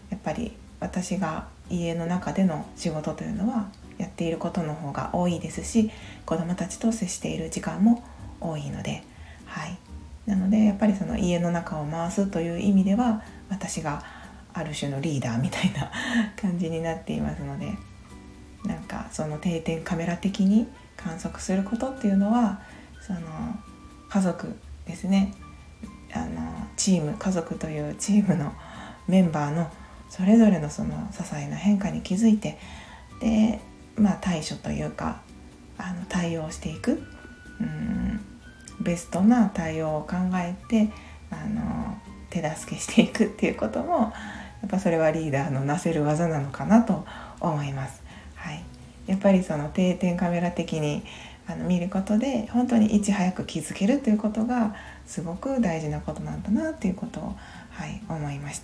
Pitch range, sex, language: 160-210 Hz, female, Japanese